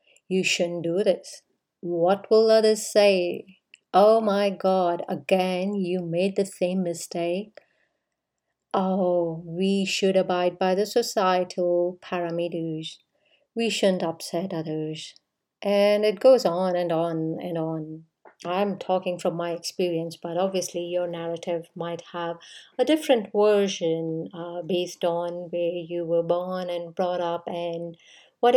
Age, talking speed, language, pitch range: 50-69, 130 wpm, English, 170-195 Hz